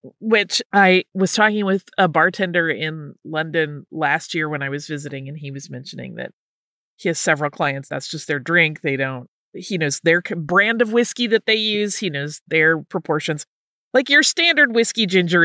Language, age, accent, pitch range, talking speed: English, 30-49, American, 160-220 Hz, 185 wpm